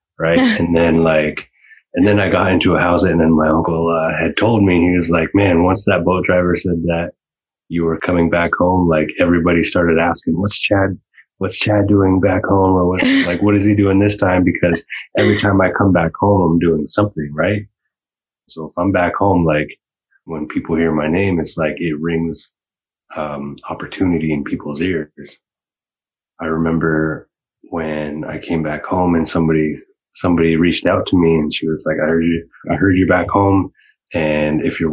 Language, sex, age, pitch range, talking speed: English, male, 20-39, 80-90 Hz, 195 wpm